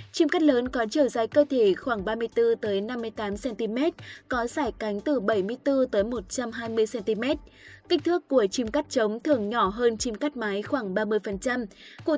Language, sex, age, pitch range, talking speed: Vietnamese, female, 20-39, 210-280 Hz, 175 wpm